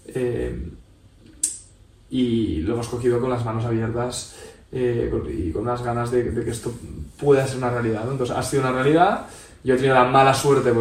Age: 20-39